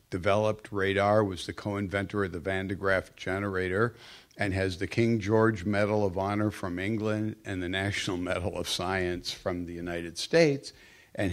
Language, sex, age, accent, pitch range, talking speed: English, male, 60-79, American, 95-125 Hz, 170 wpm